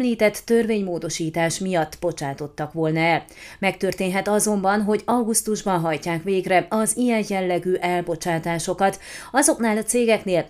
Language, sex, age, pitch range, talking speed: Hungarian, female, 30-49, 175-215 Hz, 110 wpm